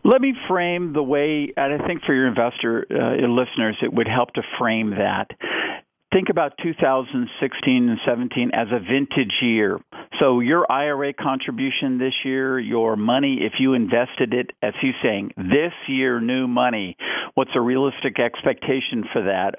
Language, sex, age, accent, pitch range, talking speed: English, male, 50-69, American, 125-155 Hz, 170 wpm